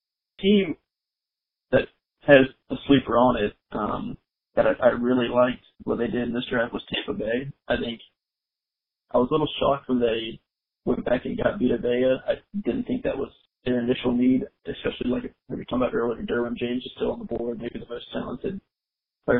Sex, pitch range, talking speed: male, 120-145 Hz, 200 wpm